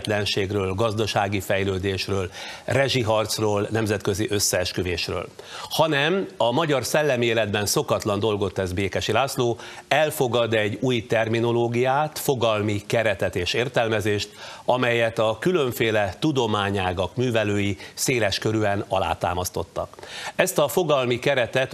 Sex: male